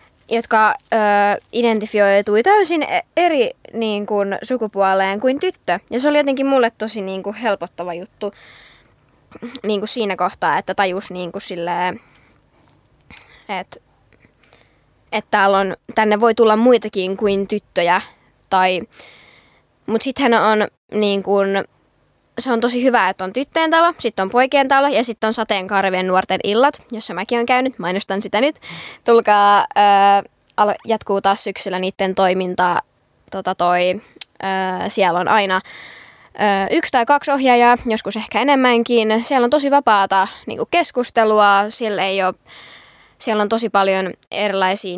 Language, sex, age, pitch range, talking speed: Finnish, female, 20-39, 195-235 Hz, 135 wpm